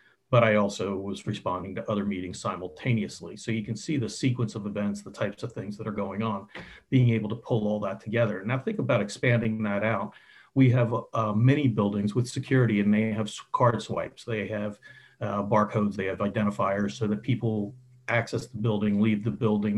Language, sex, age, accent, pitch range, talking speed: English, male, 40-59, American, 105-120 Hz, 200 wpm